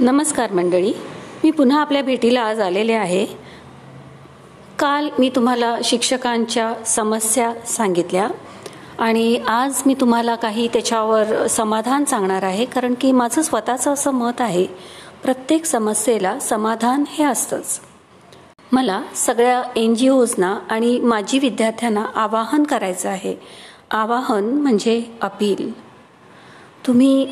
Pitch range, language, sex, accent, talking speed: 205-250 Hz, Marathi, female, native, 110 wpm